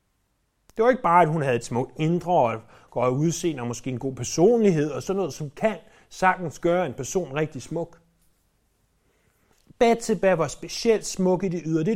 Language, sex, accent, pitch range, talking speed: Danish, male, native, 125-185 Hz, 190 wpm